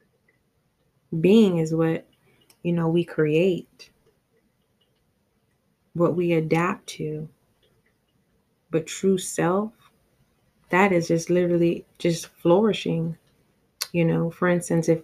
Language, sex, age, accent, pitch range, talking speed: English, female, 20-39, American, 170-190 Hz, 100 wpm